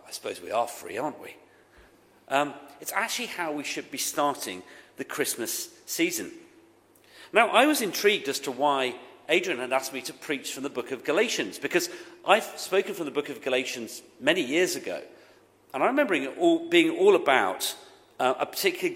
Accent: British